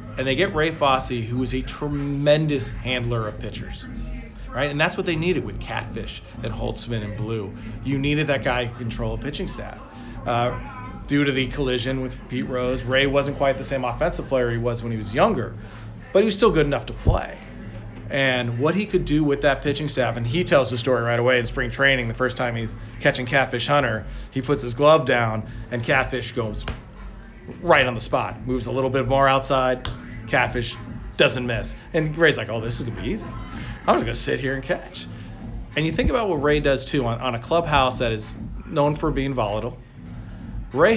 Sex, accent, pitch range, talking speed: male, American, 115-140 Hz, 210 wpm